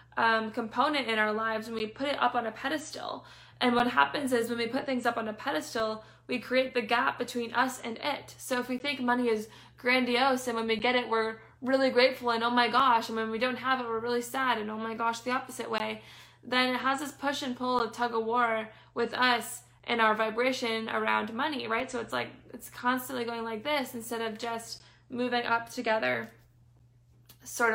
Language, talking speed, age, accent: English, 220 wpm, 20-39, American